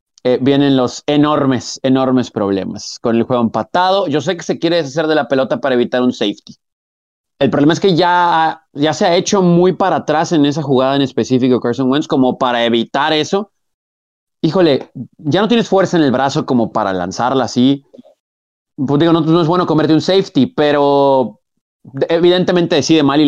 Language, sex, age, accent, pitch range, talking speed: Spanish, male, 30-49, Mexican, 125-170 Hz, 185 wpm